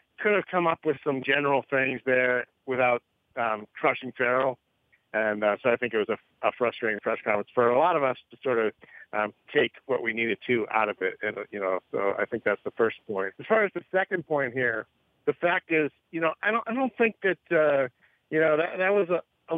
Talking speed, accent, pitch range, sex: 240 wpm, American, 110-140 Hz, male